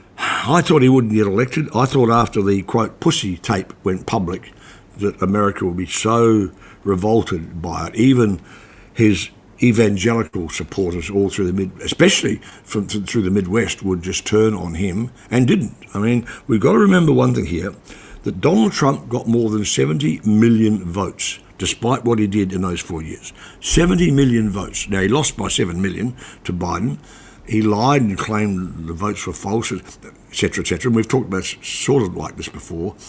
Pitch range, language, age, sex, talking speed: 95-130 Hz, English, 60-79, male, 185 wpm